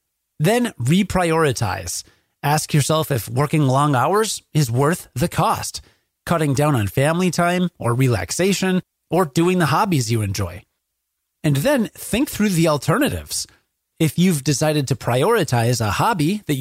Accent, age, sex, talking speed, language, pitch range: American, 30-49, male, 140 wpm, English, 120-175 Hz